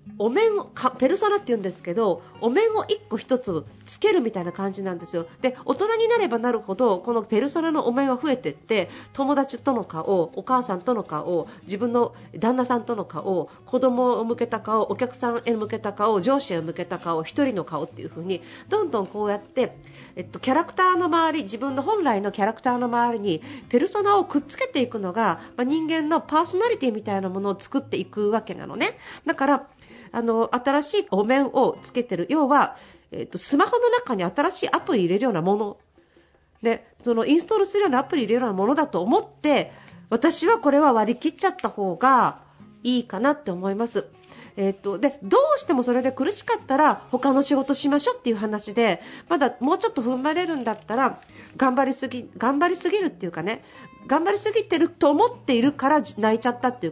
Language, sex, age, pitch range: Japanese, female, 40-59, 215-295 Hz